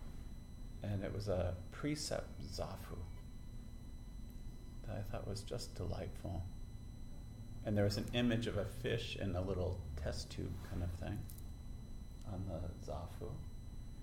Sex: male